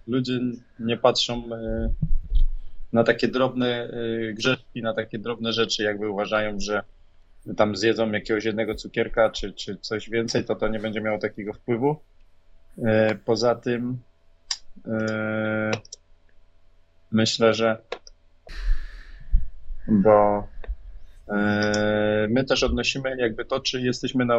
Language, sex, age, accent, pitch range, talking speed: Polish, male, 20-39, native, 100-120 Hz, 105 wpm